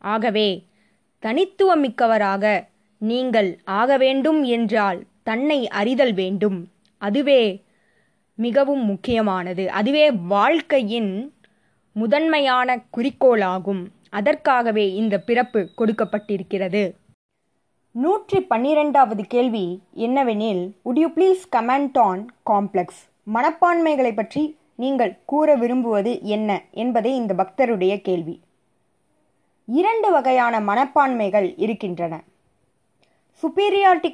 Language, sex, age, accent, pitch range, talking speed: Tamil, female, 20-39, native, 200-285 Hz, 75 wpm